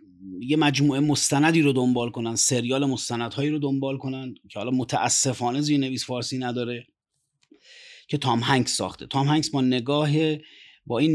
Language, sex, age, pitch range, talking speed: Persian, male, 30-49, 115-140 Hz, 145 wpm